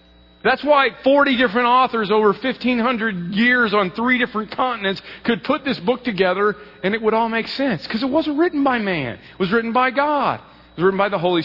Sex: male